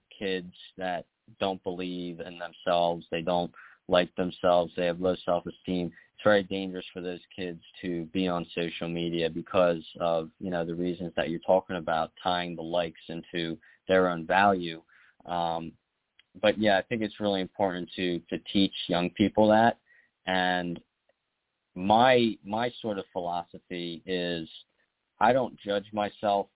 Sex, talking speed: male, 150 wpm